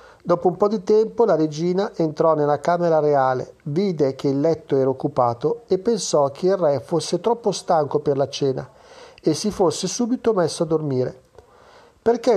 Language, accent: Italian, native